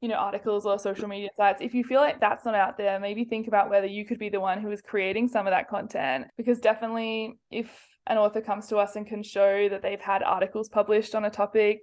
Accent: Australian